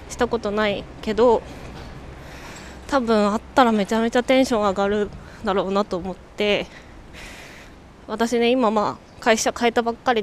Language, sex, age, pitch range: Japanese, female, 20-39, 200-245 Hz